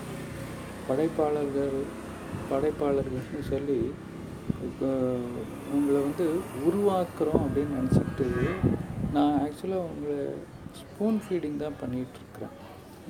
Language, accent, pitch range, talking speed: Tamil, native, 135-155 Hz, 70 wpm